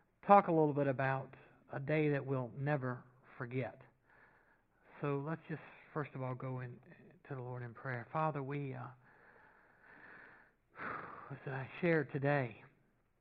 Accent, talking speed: American, 140 wpm